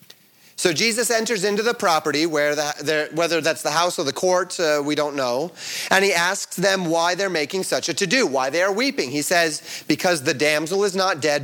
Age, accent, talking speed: 30-49, American, 205 wpm